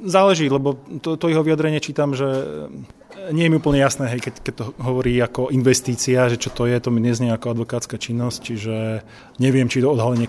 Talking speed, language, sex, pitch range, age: 210 wpm, Slovak, male, 110-125 Hz, 20-39